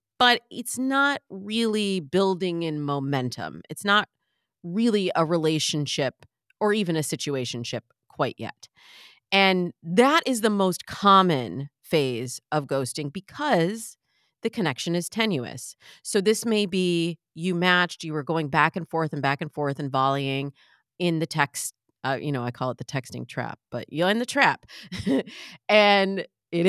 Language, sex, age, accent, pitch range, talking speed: English, female, 30-49, American, 140-205 Hz, 155 wpm